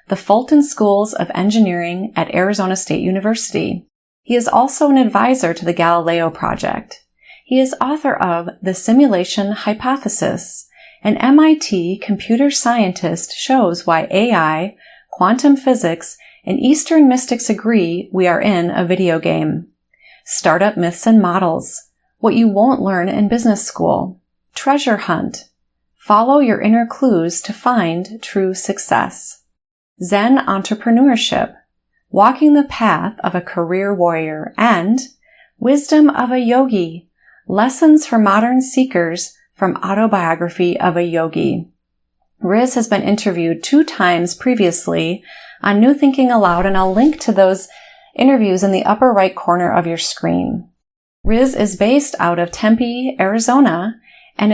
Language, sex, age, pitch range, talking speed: English, female, 30-49, 180-255 Hz, 135 wpm